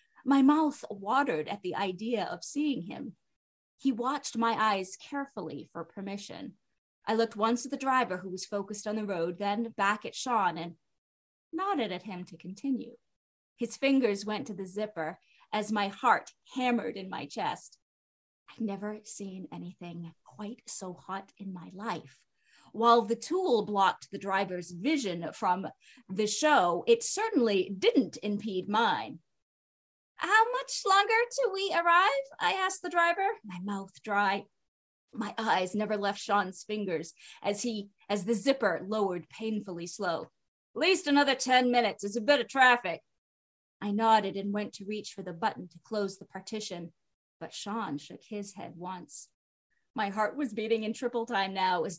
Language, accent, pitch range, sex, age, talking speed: English, American, 190-250 Hz, female, 30-49, 165 wpm